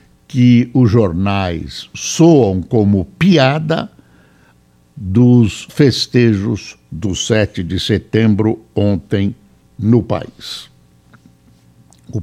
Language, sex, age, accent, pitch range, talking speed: Portuguese, male, 60-79, Brazilian, 90-130 Hz, 80 wpm